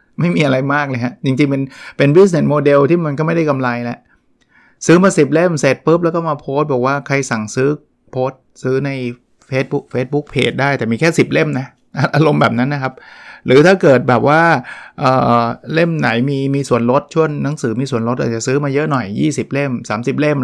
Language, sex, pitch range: Thai, male, 115-145 Hz